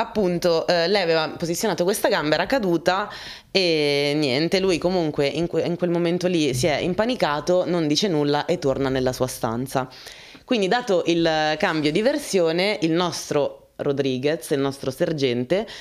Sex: female